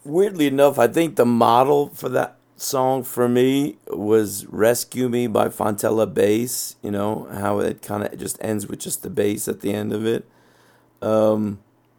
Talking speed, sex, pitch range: 175 wpm, male, 105-125 Hz